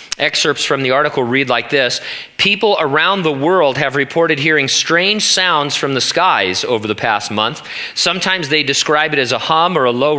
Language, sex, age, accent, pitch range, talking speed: English, male, 40-59, American, 125-160 Hz, 195 wpm